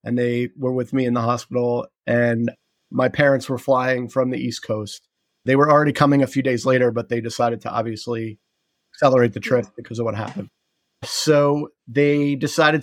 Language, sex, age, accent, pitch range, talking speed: English, male, 30-49, American, 115-130 Hz, 185 wpm